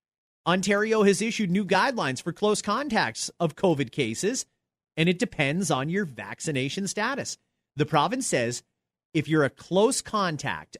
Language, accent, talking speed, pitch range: English, American, 145 wpm, 145-225 Hz